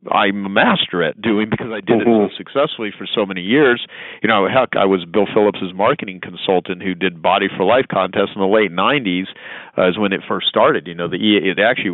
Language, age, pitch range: English, 40-59, 90-100 Hz